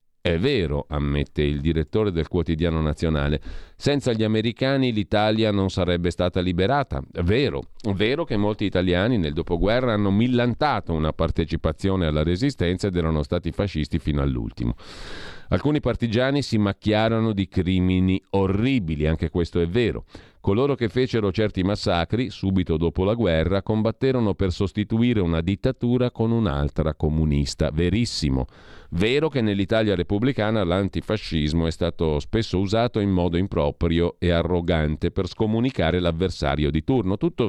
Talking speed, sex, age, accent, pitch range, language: 140 wpm, male, 40-59, native, 85-115 Hz, Italian